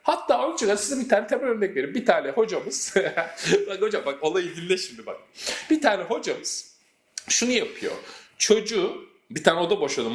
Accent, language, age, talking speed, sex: native, Turkish, 40-59, 165 wpm, male